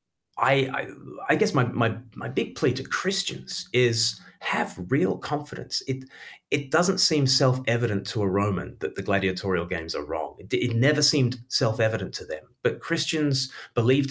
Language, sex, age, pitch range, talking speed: English, male, 30-49, 100-130 Hz, 175 wpm